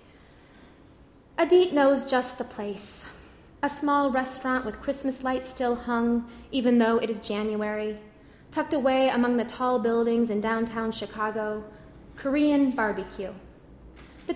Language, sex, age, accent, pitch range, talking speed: English, female, 20-39, American, 215-265 Hz, 125 wpm